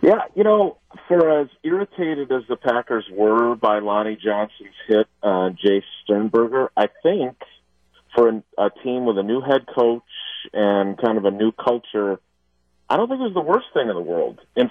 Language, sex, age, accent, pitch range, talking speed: English, male, 40-59, American, 100-135 Hz, 185 wpm